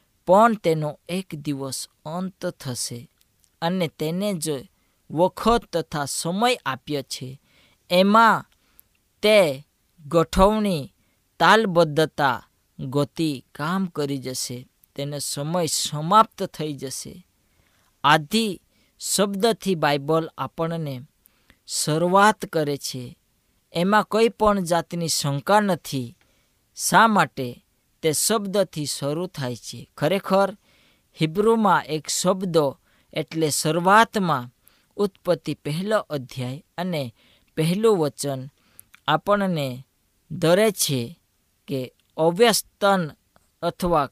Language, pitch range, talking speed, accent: Gujarati, 140-190 Hz, 75 wpm, native